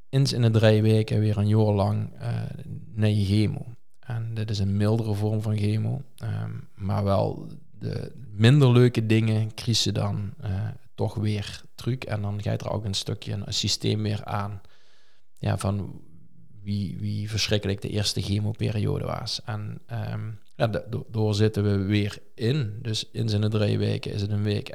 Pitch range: 105-125 Hz